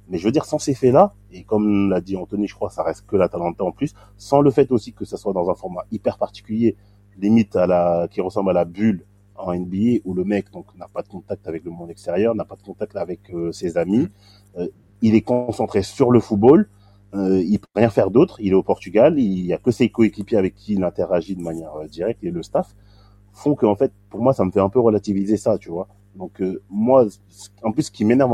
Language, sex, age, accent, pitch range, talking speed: French, male, 30-49, French, 95-110 Hz, 260 wpm